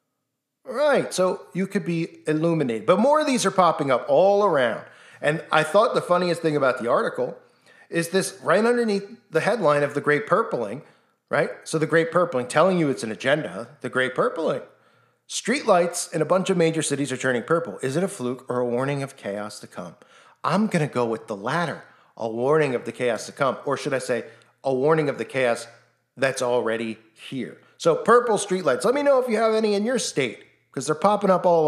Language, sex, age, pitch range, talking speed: English, male, 40-59, 135-195 Hz, 210 wpm